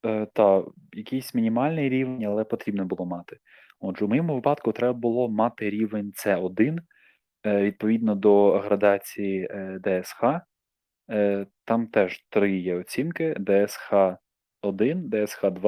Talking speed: 110 wpm